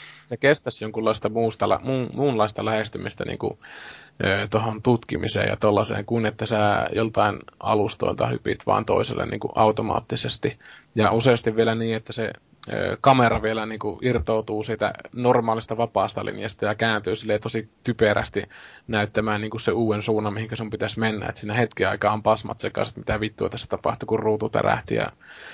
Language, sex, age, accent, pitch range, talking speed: Finnish, male, 20-39, native, 110-120 Hz, 150 wpm